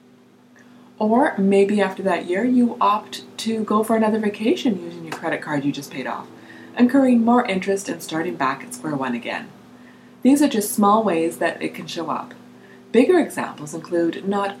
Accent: American